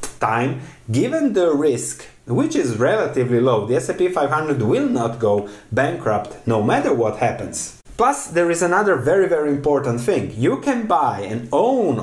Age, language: 30-49, English